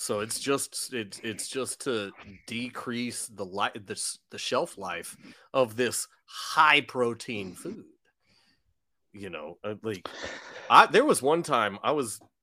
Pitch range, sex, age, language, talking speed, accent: 100-130 Hz, male, 30-49, English, 140 wpm, American